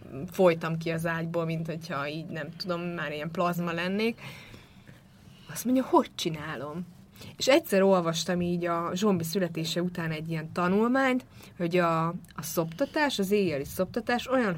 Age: 30-49